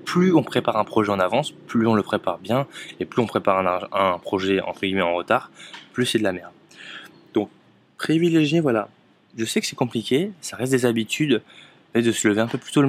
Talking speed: 230 wpm